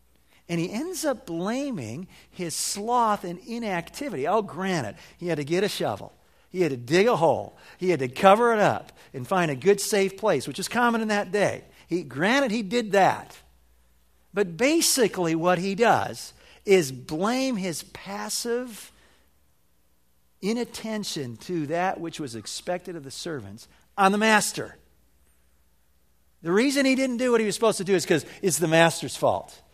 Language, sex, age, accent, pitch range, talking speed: English, male, 50-69, American, 150-225 Hz, 170 wpm